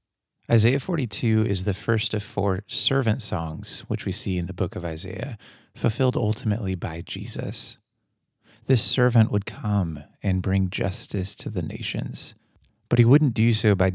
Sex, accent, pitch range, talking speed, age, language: male, American, 100-120 Hz, 160 wpm, 30-49, English